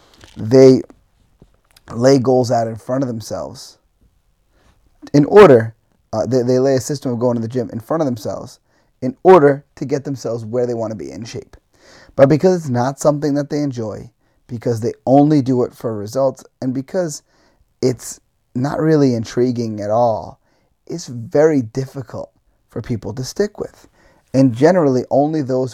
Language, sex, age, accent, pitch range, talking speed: English, male, 30-49, American, 115-140 Hz, 170 wpm